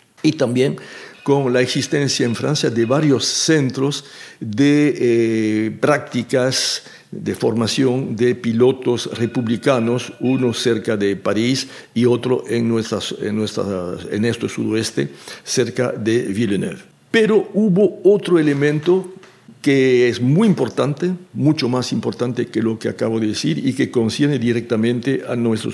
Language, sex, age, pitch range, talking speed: French, male, 60-79, 115-150 Hz, 130 wpm